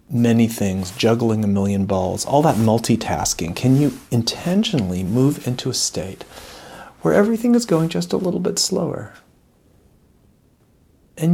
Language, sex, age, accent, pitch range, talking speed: English, male, 40-59, American, 110-150 Hz, 140 wpm